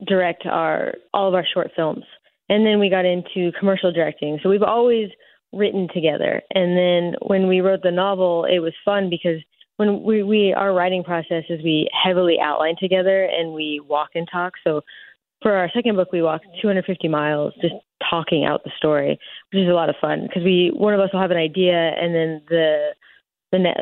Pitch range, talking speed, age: 160-190 Hz, 200 wpm, 20-39